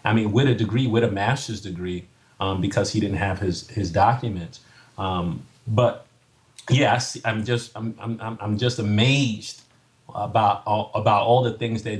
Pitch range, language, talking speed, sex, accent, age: 105-130 Hz, English, 175 wpm, male, American, 30-49